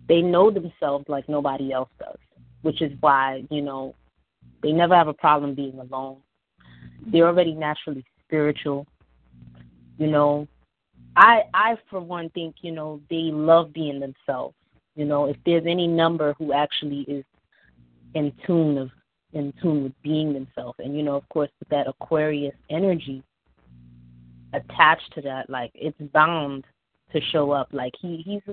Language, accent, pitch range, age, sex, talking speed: English, American, 125-160 Hz, 20-39, female, 155 wpm